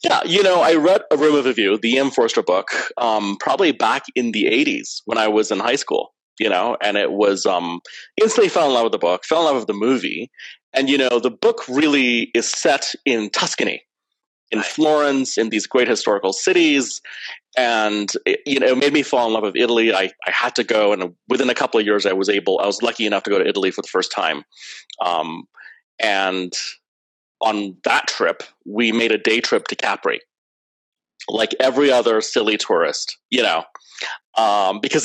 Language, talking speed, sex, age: English, 205 wpm, male, 30-49